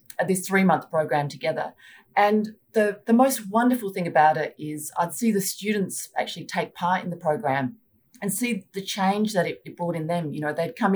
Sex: female